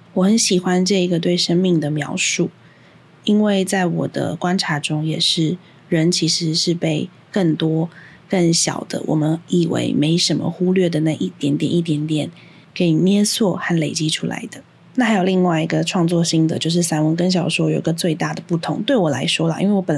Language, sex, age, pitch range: Chinese, female, 20-39, 160-190 Hz